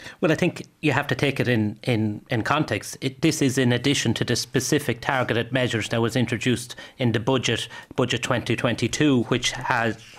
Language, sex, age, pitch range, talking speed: English, male, 30-49, 120-140 Hz, 190 wpm